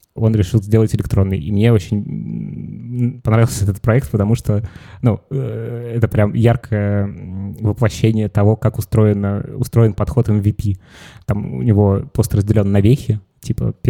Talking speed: 135 wpm